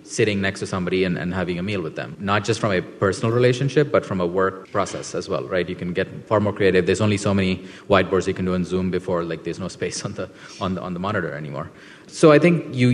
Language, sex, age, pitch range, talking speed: English, male, 30-49, 90-110 Hz, 270 wpm